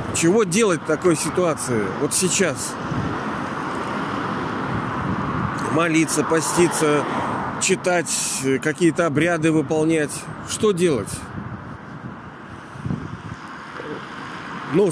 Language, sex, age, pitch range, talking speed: Russian, male, 40-59, 120-155 Hz, 65 wpm